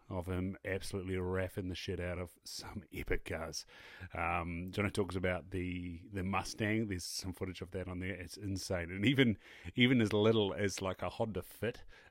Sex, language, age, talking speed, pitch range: male, English, 30-49, 185 wpm, 90-100 Hz